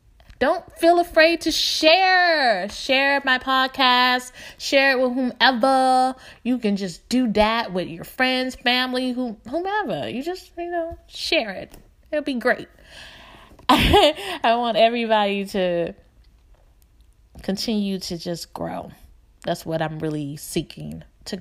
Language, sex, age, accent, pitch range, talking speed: English, female, 20-39, American, 180-260 Hz, 125 wpm